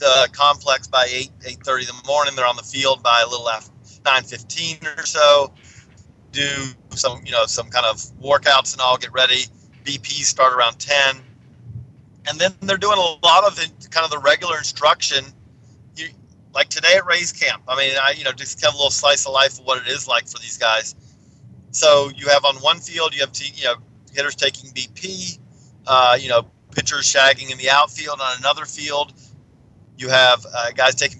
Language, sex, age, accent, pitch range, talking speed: English, male, 40-59, American, 125-145 Hz, 205 wpm